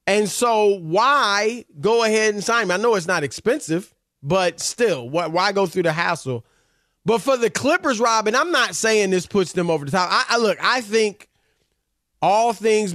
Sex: male